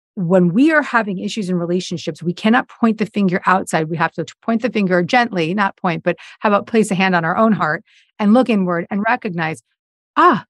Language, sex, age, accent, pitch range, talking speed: English, female, 40-59, American, 175-230 Hz, 215 wpm